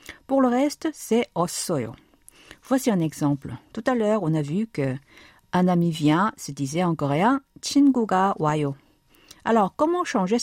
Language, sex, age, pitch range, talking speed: French, female, 50-69, 150-235 Hz, 155 wpm